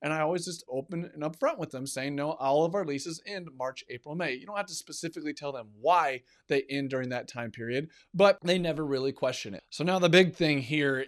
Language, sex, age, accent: English, male, 30-49, American